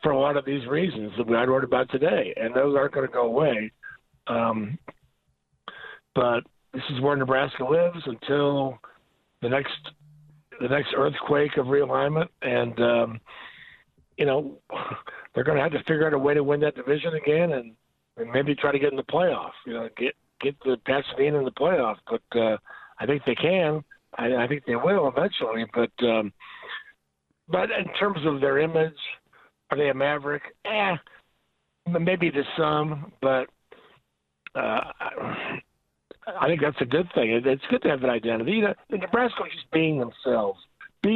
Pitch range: 120-150 Hz